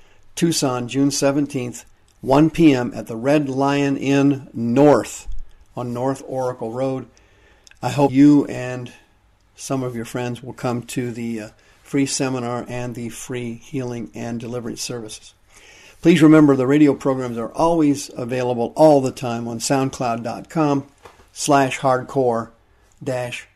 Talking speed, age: 135 wpm, 50-69